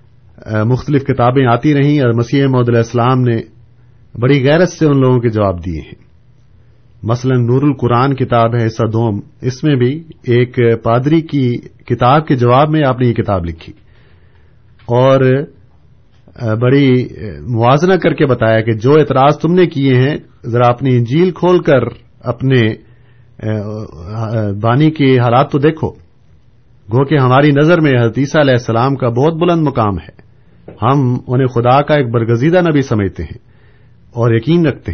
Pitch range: 115-145 Hz